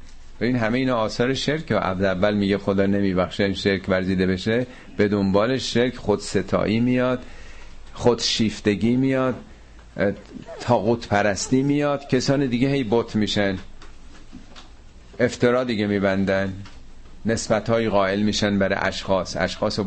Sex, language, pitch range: male, Persian, 95-120 Hz